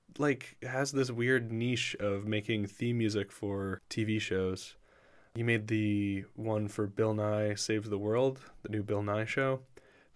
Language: English